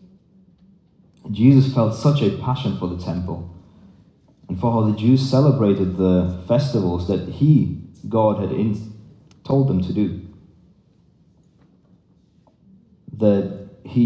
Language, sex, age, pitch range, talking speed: English, male, 30-49, 90-120 Hz, 110 wpm